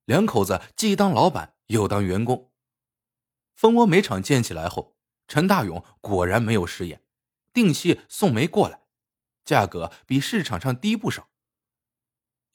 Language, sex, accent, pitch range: Chinese, male, native, 115-170 Hz